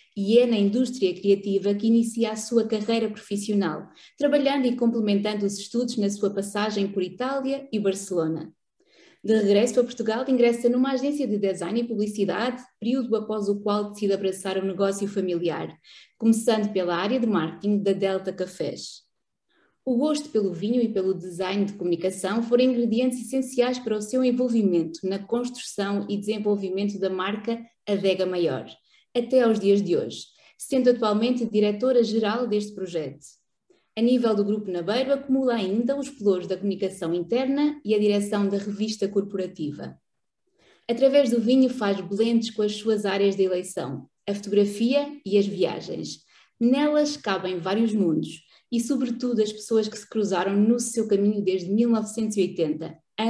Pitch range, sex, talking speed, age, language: 195-240 Hz, female, 150 wpm, 20-39, Portuguese